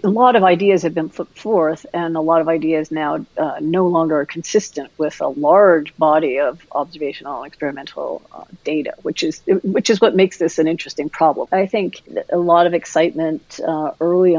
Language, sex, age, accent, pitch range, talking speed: English, female, 40-59, American, 145-180 Hz, 195 wpm